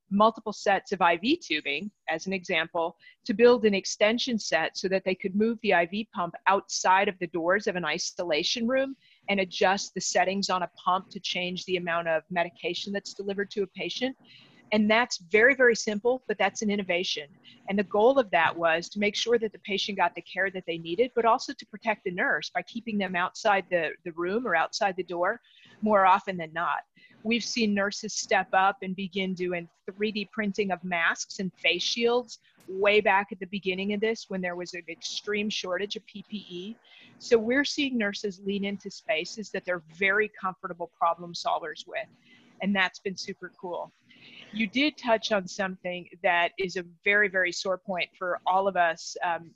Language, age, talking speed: English, 40-59, 195 wpm